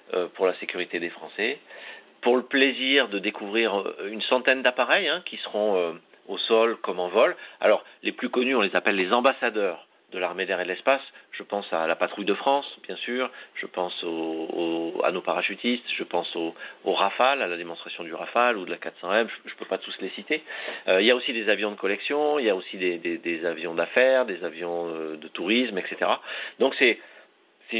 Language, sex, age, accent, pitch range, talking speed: French, male, 40-59, French, 90-135 Hz, 220 wpm